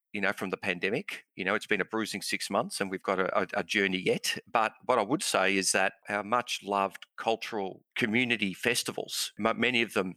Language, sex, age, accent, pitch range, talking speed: English, male, 40-59, Australian, 95-115 Hz, 220 wpm